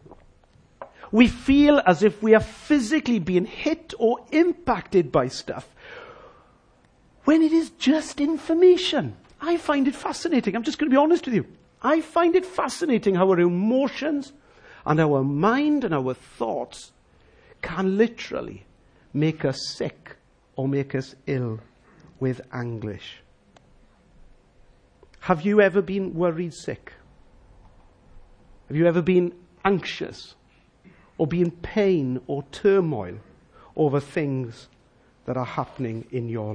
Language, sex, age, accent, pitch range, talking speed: English, male, 50-69, British, 140-225 Hz, 130 wpm